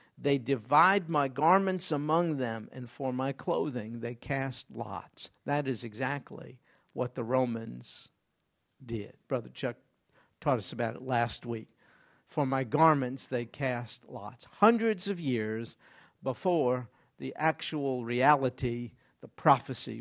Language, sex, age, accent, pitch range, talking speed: English, male, 50-69, American, 125-155 Hz, 130 wpm